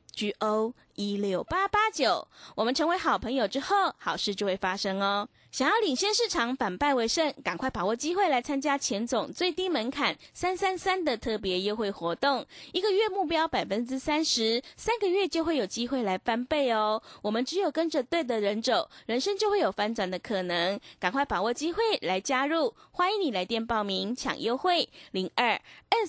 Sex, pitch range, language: female, 215-325 Hz, Chinese